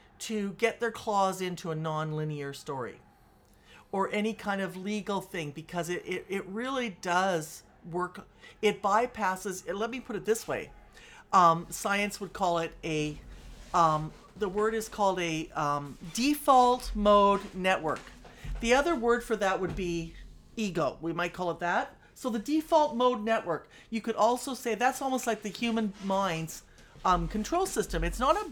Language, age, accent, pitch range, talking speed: English, 50-69, American, 165-215 Hz, 165 wpm